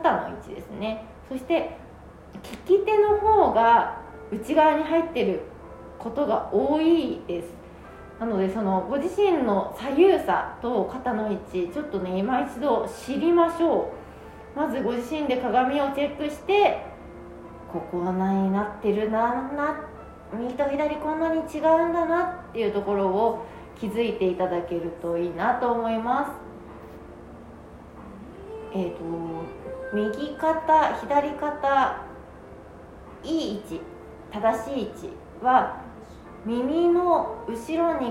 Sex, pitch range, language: female, 205-320 Hz, Japanese